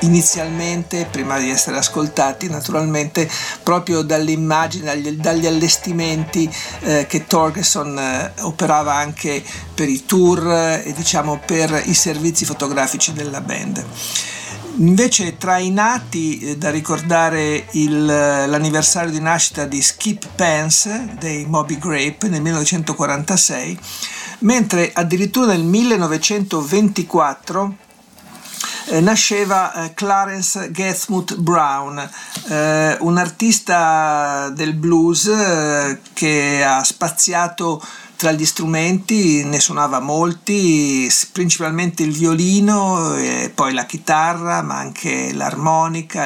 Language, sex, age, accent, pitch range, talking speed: Italian, male, 50-69, native, 150-185 Hz, 100 wpm